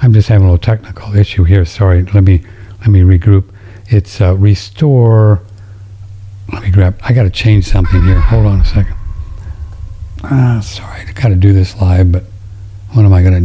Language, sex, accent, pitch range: English, male, American, 95-105 Hz